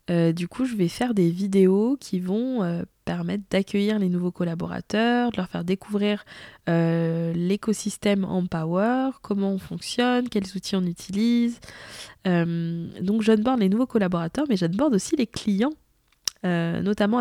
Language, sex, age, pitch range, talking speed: French, female, 20-39, 175-215 Hz, 155 wpm